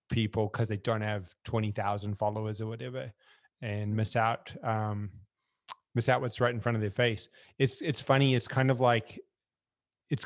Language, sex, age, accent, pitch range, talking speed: English, male, 30-49, American, 115-125 Hz, 175 wpm